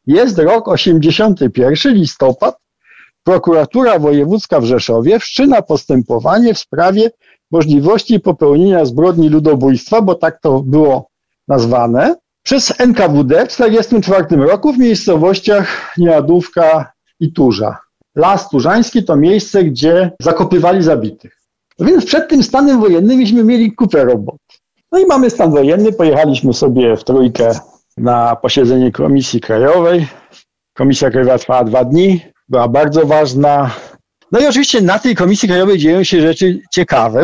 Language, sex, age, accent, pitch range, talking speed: Polish, male, 50-69, native, 135-190 Hz, 130 wpm